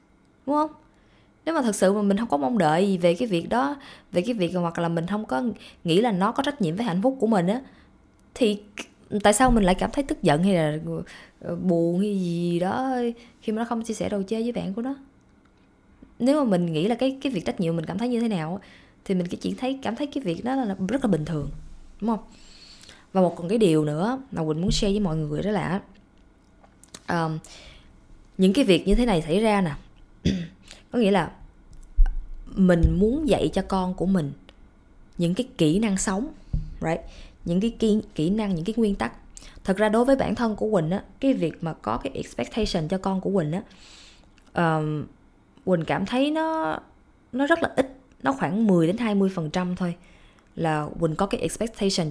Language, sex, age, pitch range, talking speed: Vietnamese, female, 20-39, 175-235 Hz, 215 wpm